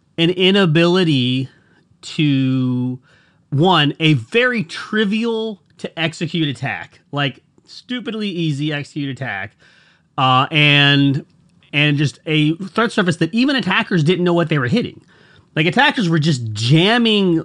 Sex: male